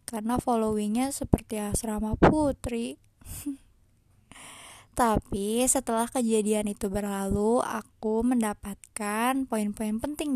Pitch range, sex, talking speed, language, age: 220-270 Hz, female, 85 wpm, Malay, 20-39